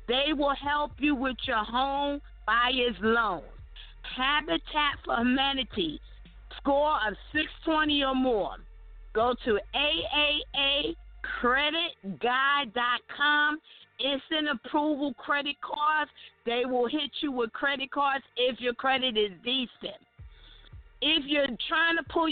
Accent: American